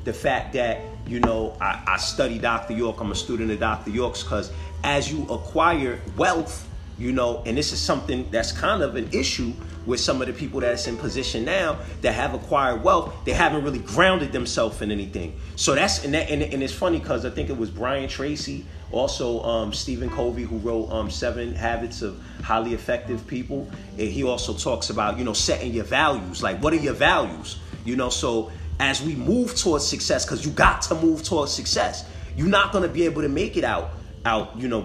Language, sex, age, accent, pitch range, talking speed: English, male, 30-49, American, 85-120 Hz, 210 wpm